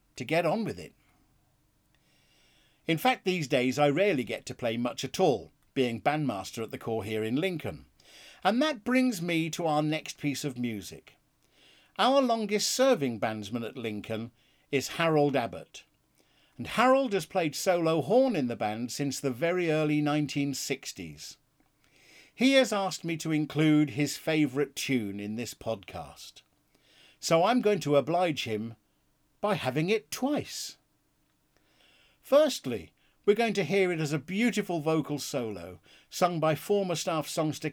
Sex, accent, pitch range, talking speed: male, British, 130-190 Hz, 155 wpm